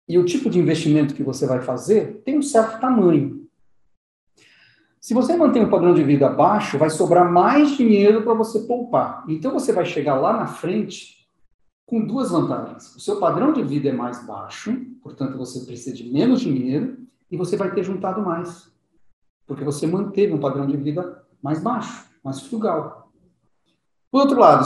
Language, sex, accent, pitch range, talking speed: English, male, Brazilian, 140-225 Hz, 180 wpm